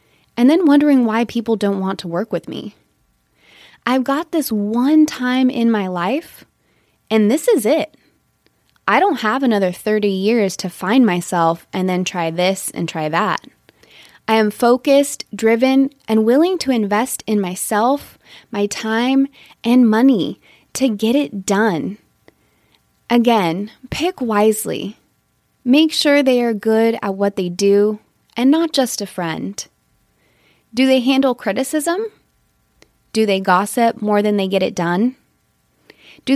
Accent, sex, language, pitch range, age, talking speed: American, female, English, 190-255 Hz, 20-39, 145 wpm